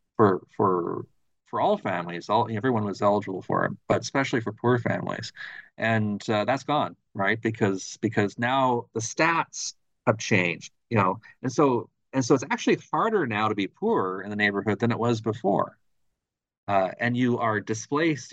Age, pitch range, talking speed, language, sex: 40-59, 100-120 Hz, 175 wpm, English, male